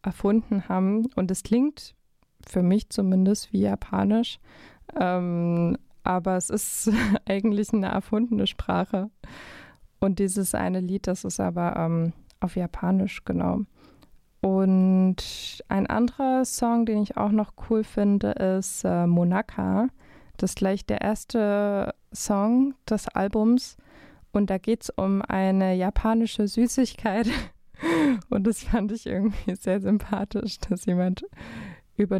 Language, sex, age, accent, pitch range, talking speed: German, female, 20-39, German, 185-225 Hz, 125 wpm